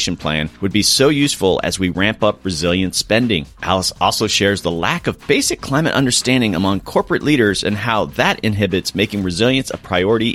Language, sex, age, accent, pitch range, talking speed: English, male, 30-49, American, 95-130 Hz, 180 wpm